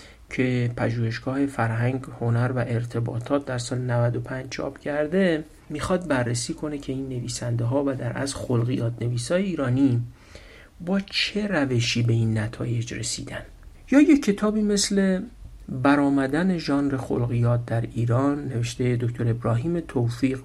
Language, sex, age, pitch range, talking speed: Persian, male, 50-69, 120-155 Hz, 130 wpm